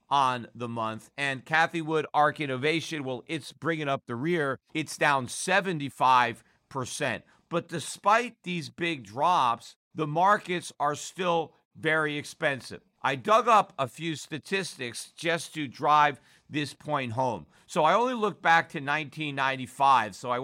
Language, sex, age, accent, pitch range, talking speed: English, male, 50-69, American, 130-165 Hz, 145 wpm